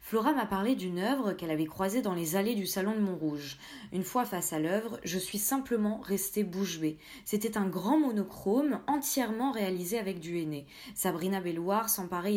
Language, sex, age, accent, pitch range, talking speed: French, female, 20-39, French, 175-230 Hz, 180 wpm